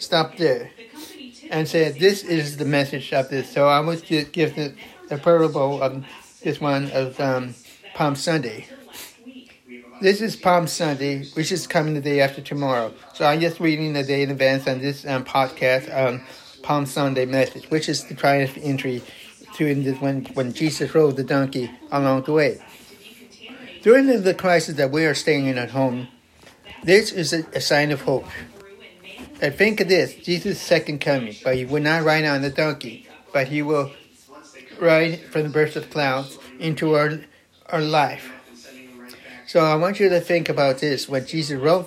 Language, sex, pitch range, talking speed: English, male, 135-170 Hz, 180 wpm